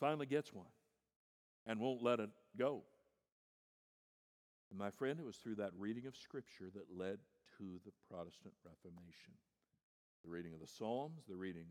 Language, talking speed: English, 155 wpm